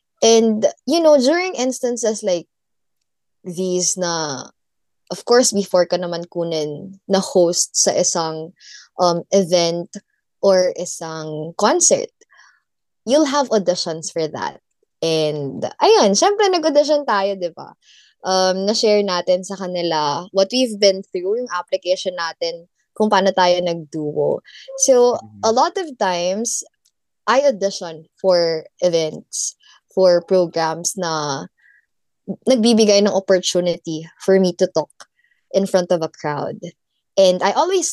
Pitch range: 170-235 Hz